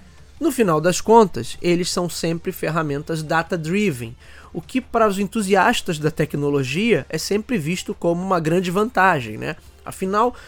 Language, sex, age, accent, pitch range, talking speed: Portuguese, male, 20-39, Brazilian, 155-215 Hz, 145 wpm